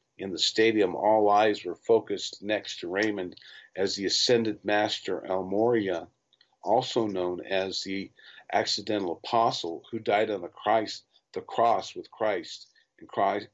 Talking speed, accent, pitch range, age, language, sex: 140 wpm, American, 100-115 Hz, 50-69, English, male